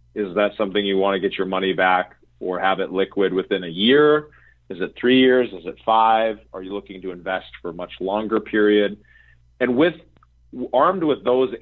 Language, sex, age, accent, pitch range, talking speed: English, male, 40-59, American, 95-130 Hz, 195 wpm